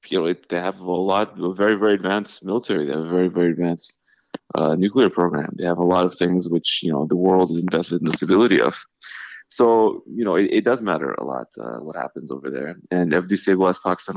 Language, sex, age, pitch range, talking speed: English, male, 20-39, 85-95 Hz, 235 wpm